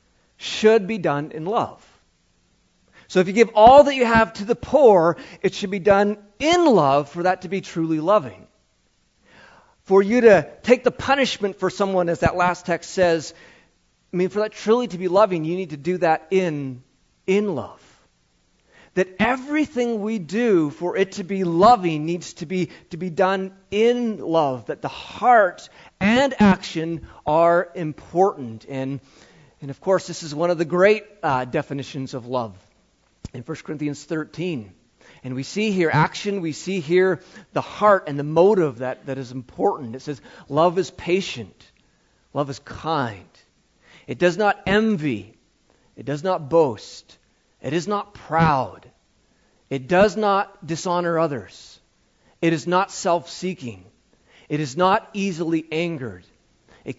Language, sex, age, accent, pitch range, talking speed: English, male, 40-59, American, 150-195 Hz, 160 wpm